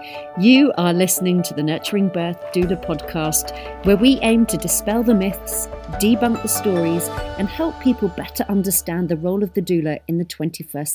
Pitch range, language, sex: 165-215 Hz, English, female